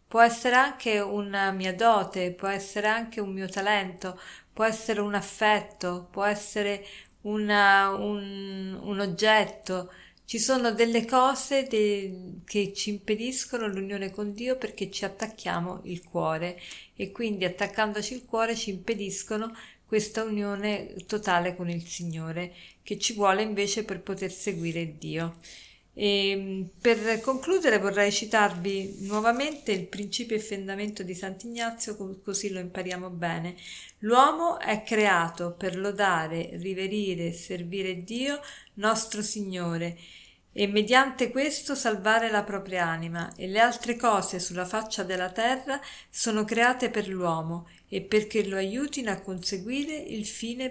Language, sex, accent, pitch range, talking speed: Italian, female, native, 185-225 Hz, 130 wpm